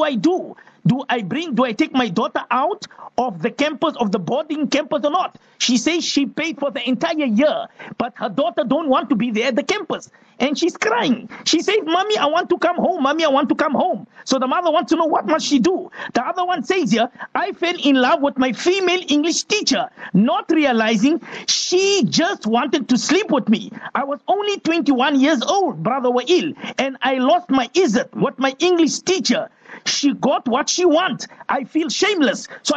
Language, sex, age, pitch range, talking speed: English, male, 50-69, 245-330 Hz, 215 wpm